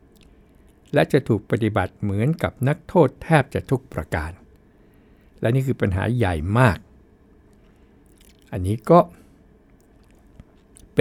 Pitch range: 100-130 Hz